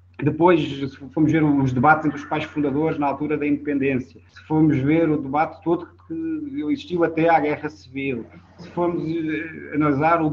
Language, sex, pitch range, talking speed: Portuguese, male, 120-155 Hz, 175 wpm